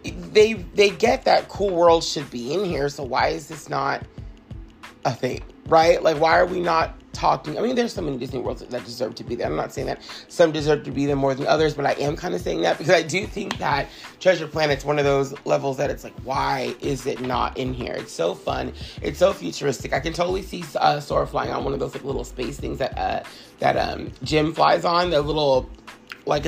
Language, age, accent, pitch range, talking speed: English, 30-49, American, 140-175 Hz, 240 wpm